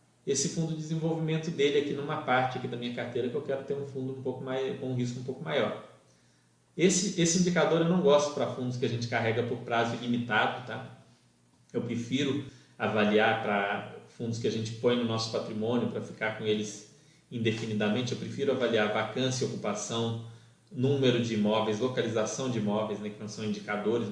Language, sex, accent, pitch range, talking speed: Portuguese, male, Brazilian, 115-150 Hz, 190 wpm